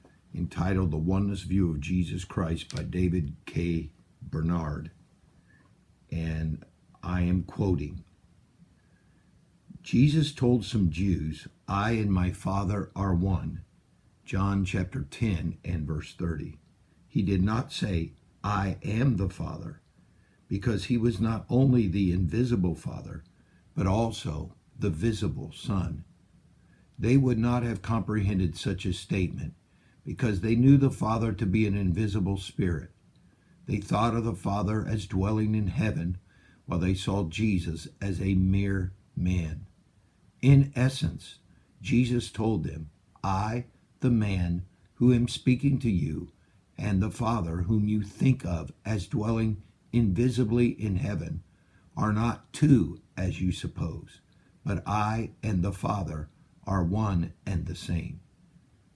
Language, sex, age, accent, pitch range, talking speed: English, male, 50-69, American, 90-115 Hz, 130 wpm